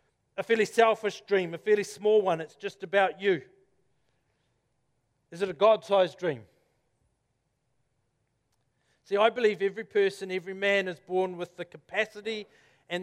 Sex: male